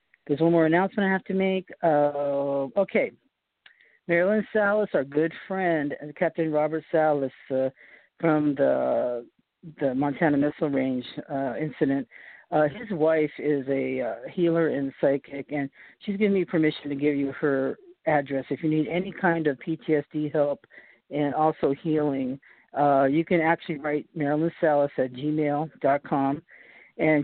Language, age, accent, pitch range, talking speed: English, 50-69, American, 140-165 Hz, 145 wpm